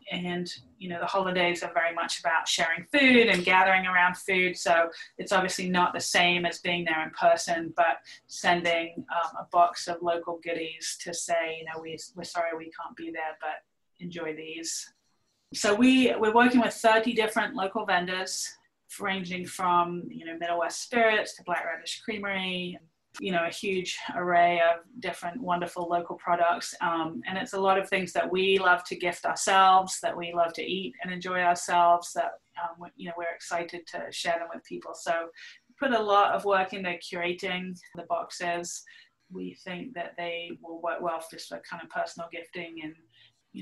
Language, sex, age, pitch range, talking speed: English, female, 30-49, 170-190 Hz, 190 wpm